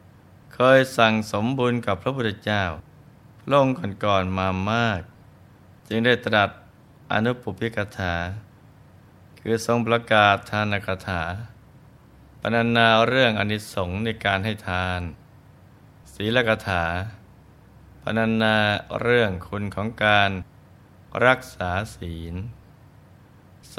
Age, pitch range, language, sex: 20-39, 95-115 Hz, Thai, male